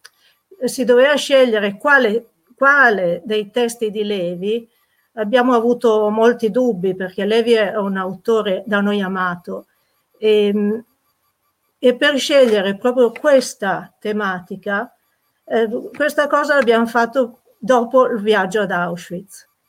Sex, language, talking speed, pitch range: female, Italian, 115 wpm, 195-235 Hz